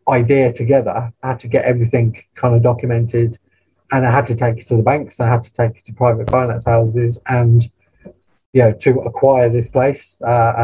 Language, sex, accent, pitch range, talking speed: English, male, British, 115-130 Hz, 205 wpm